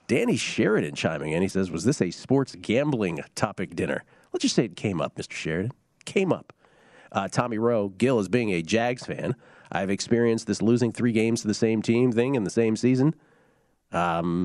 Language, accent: English, American